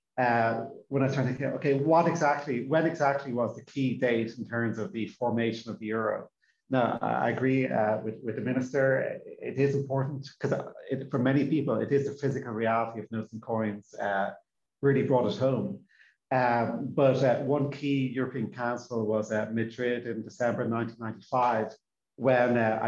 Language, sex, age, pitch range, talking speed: English, male, 30-49, 115-135 Hz, 180 wpm